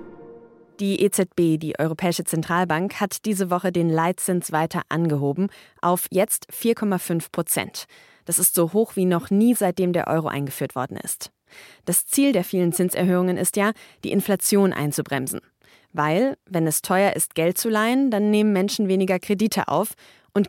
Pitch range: 155-205 Hz